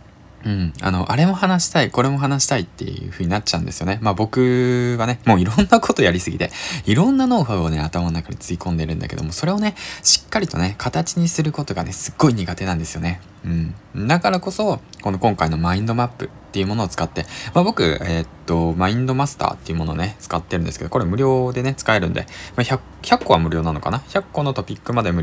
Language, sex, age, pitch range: Japanese, male, 20-39, 85-125 Hz